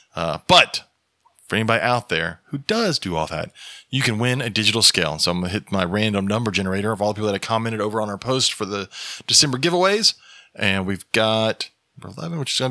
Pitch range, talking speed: 95-120 Hz, 230 wpm